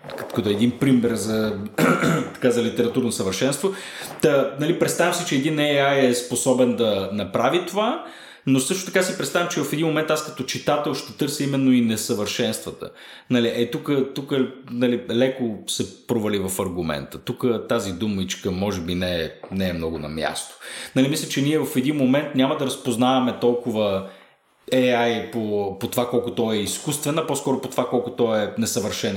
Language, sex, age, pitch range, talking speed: Bulgarian, male, 30-49, 115-145 Hz, 175 wpm